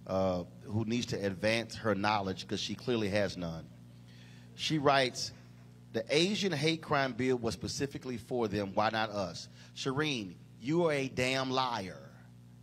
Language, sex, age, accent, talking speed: English, male, 40-59, American, 150 wpm